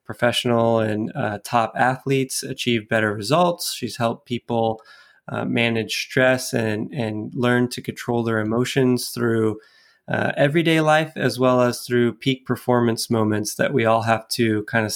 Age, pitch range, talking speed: 20-39, 115-135 Hz, 155 wpm